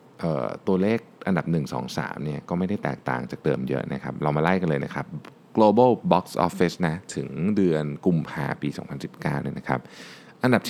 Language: Thai